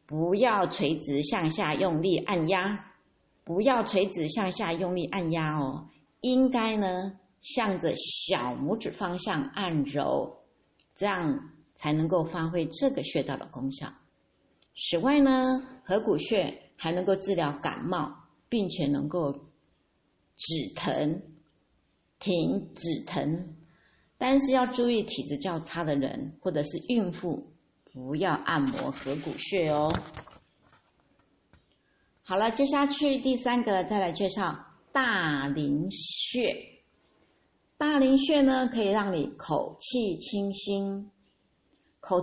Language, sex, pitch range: Chinese, female, 155-225 Hz